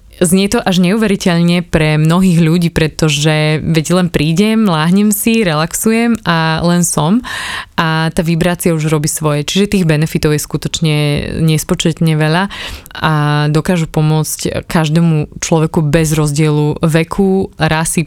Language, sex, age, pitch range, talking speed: Slovak, female, 20-39, 150-170 Hz, 130 wpm